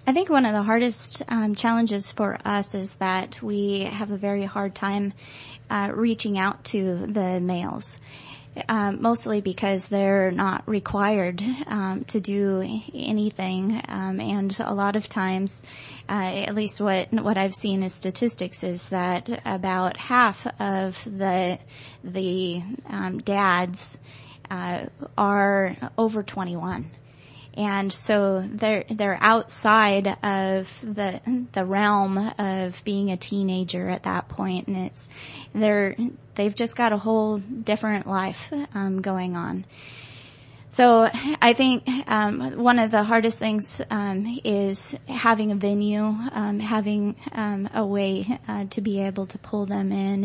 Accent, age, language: American, 20-39, English